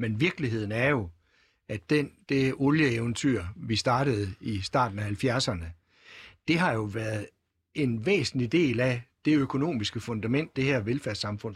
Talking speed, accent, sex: 140 wpm, native, male